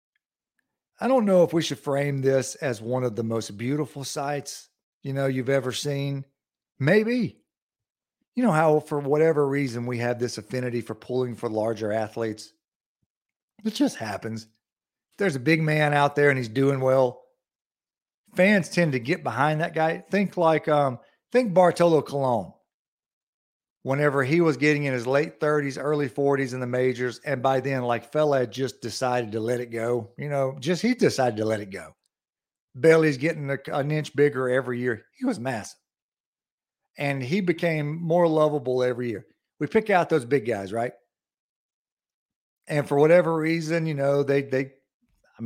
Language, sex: English, male